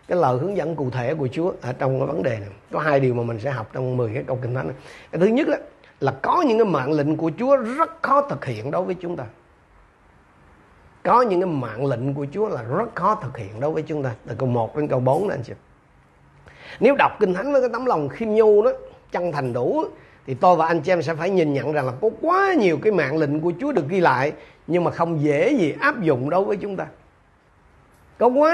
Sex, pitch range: male, 140-195 Hz